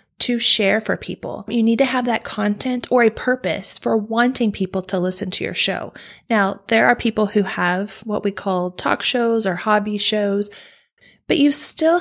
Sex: female